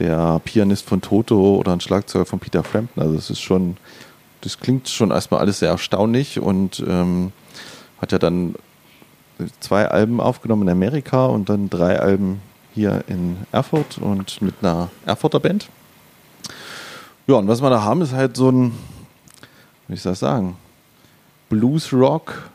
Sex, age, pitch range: male, 30-49, 95-125 Hz